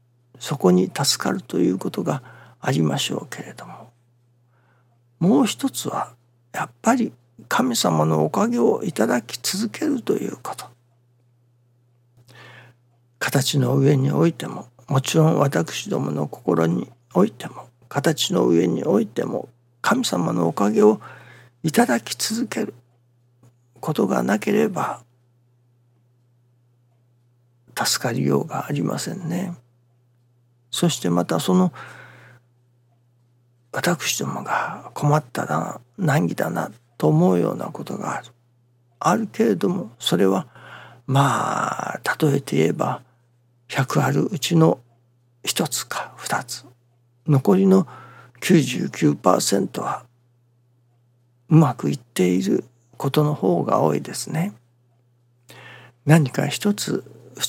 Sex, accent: male, native